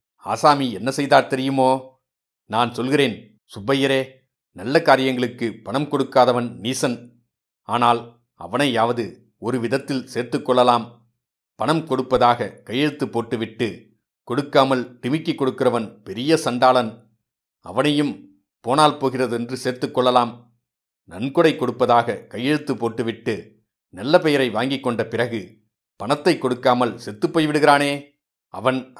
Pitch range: 120-140 Hz